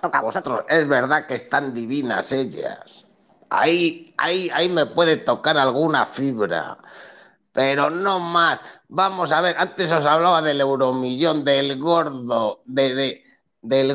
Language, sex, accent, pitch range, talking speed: Spanish, male, Spanish, 150-205 Hz, 140 wpm